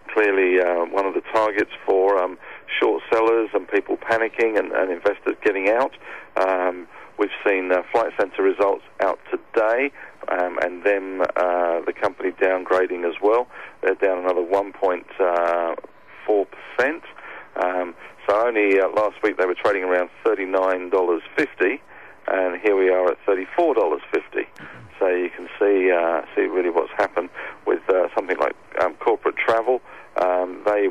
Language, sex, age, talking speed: English, male, 40-59, 145 wpm